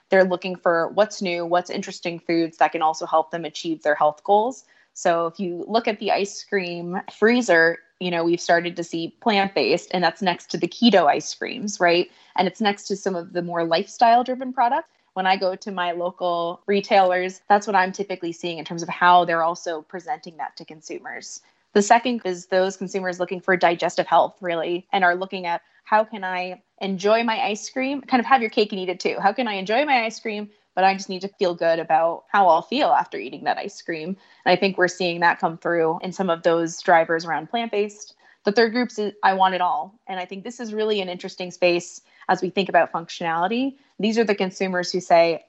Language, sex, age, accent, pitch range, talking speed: English, female, 20-39, American, 170-205 Hz, 225 wpm